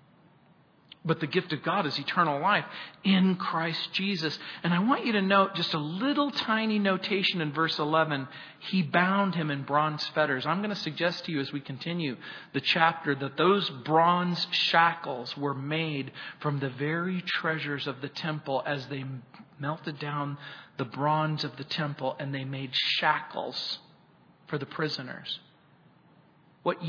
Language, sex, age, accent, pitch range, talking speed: English, male, 40-59, American, 150-190 Hz, 160 wpm